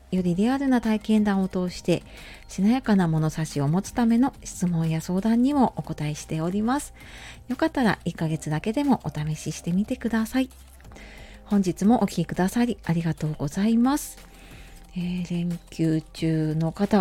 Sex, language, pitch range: female, Japanese, 165-220 Hz